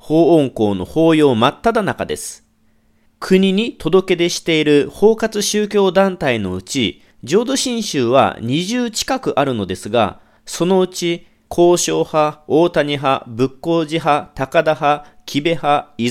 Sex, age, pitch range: male, 40-59, 135-195 Hz